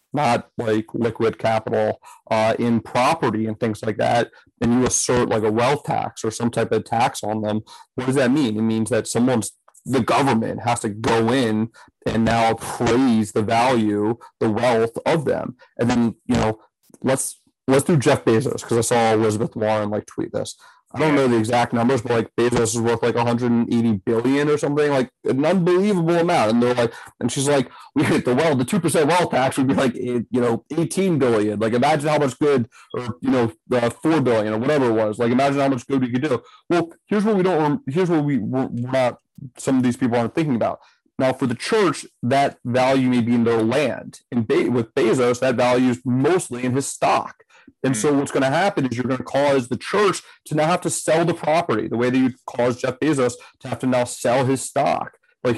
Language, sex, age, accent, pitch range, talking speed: English, male, 30-49, American, 115-140 Hz, 220 wpm